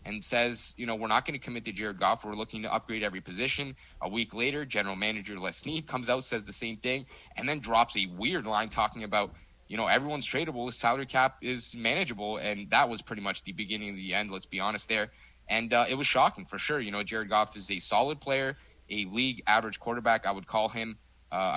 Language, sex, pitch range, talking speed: English, male, 105-130 Hz, 240 wpm